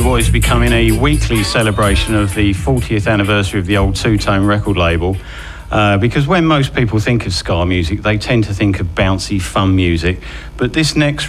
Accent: British